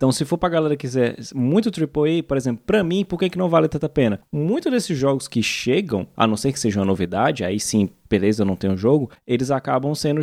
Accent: Brazilian